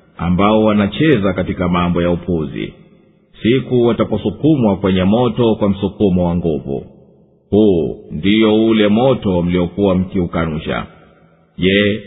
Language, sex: Swahili, male